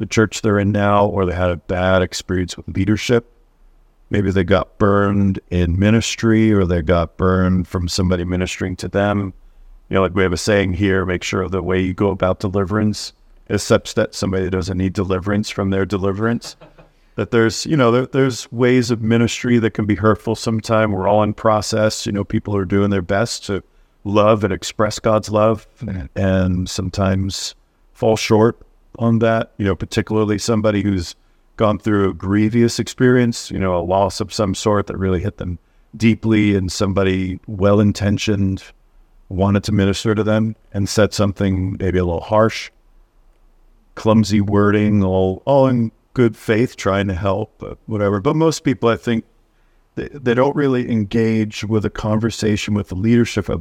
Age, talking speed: 50-69, 175 wpm